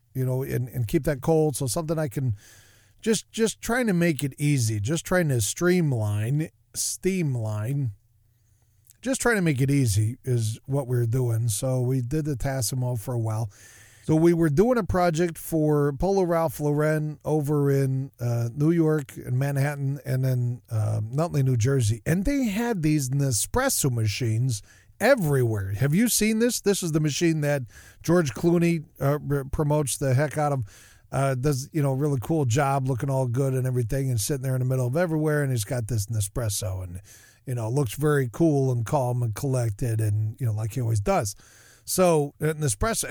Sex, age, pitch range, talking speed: male, 40-59, 120-160 Hz, 190 wpm